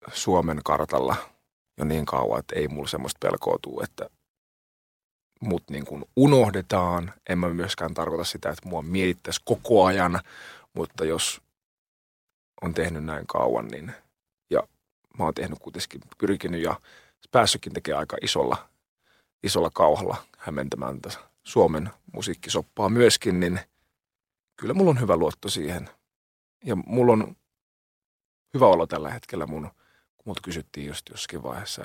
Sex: male